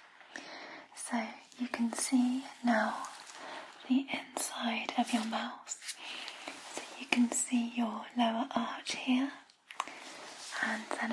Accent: British